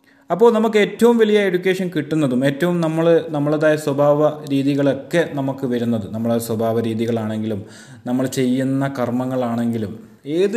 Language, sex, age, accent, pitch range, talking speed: Malayalam, male, 30-49, native, 110-150 Hz, 115 wpm